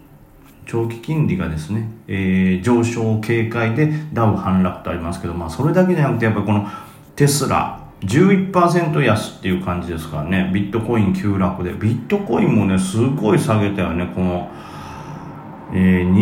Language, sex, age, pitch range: Japanese, male, 40-59, 95-145 Hz